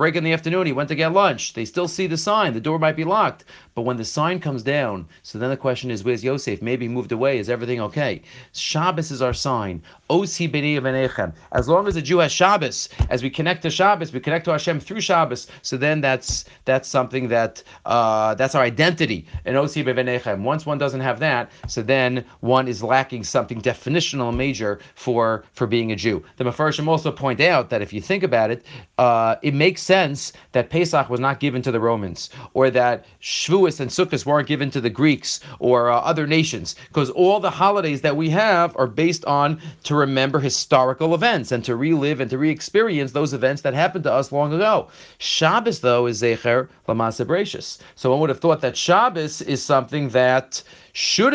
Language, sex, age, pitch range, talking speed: English, male, 40-59, 125-160 Hz, 200 wpm